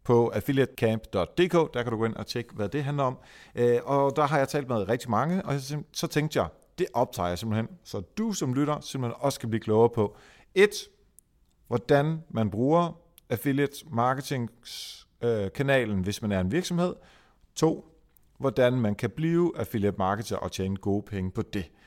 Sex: male